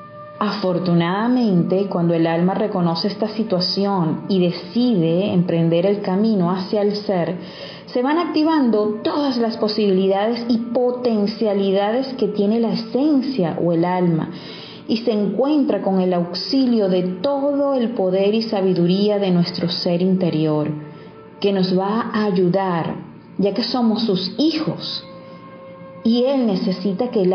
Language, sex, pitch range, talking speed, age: Spanish, female, 180-220 Hz, 135 wpm, 30-49